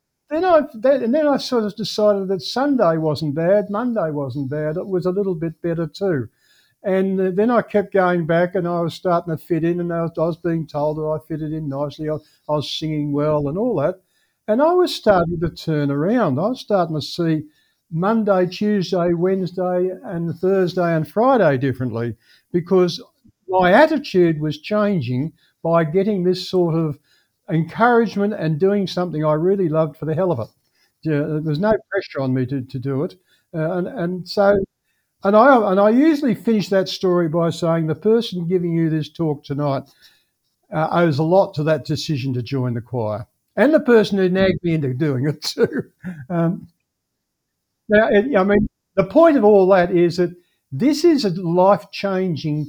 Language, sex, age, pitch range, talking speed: English, male, 60-79, 155-200 Hz, 180 wpm